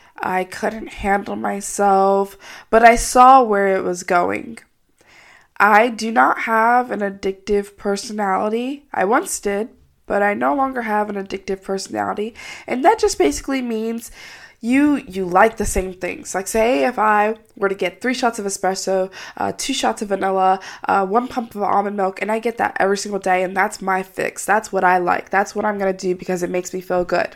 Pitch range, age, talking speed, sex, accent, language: 190-235 Hz, 20-39, 195 wpm, female, American, English